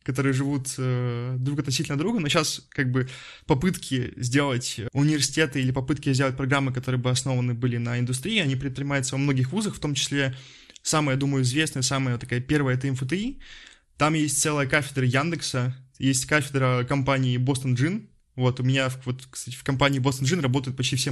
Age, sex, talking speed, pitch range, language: 20-39, male, 175 wpm, 130-145 Hz, Russian